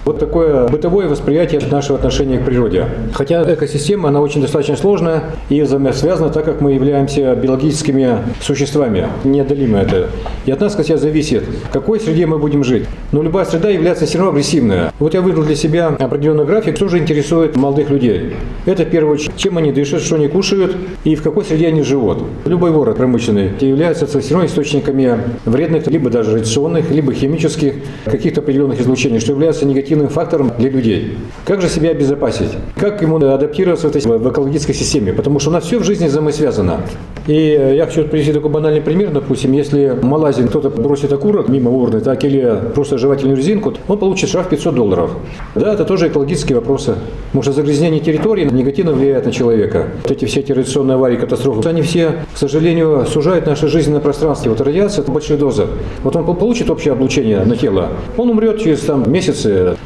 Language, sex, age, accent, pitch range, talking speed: Russian, male, 40-59, native, 135-160 Hz, 185 wpm